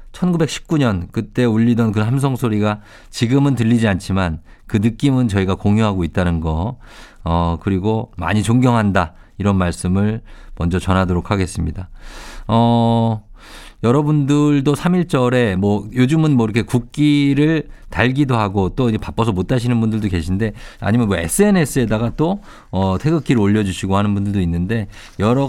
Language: Korean